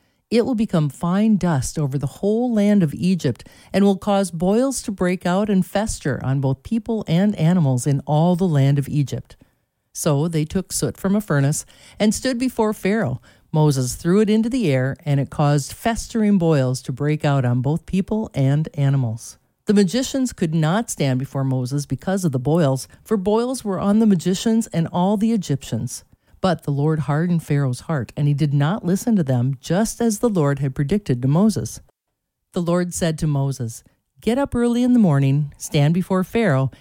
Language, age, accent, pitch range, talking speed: English, 50-69, American, 140-205 Hz, 190 wpm